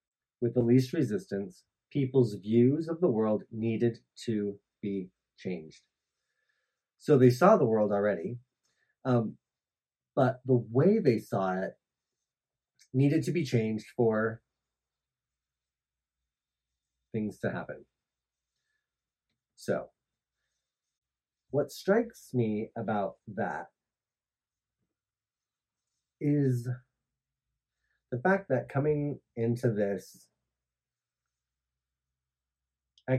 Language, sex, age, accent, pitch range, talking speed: English, male, 30-49, American, 100-130 Hz, 85 wpm